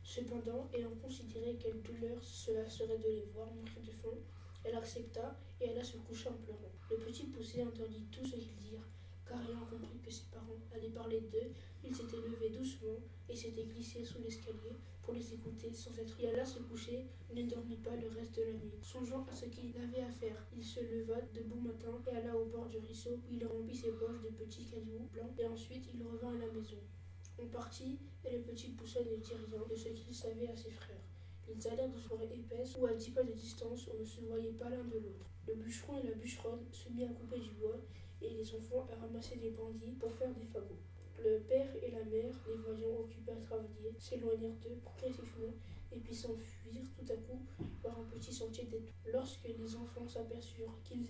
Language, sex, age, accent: French, female, 20-39, French